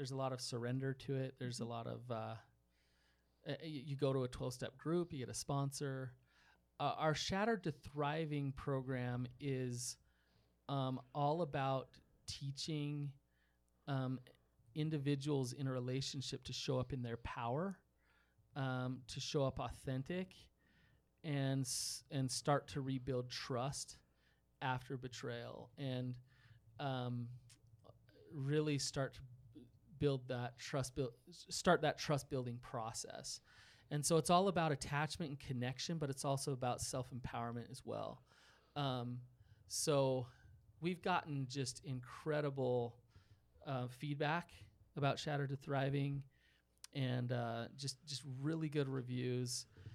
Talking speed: 130 wpm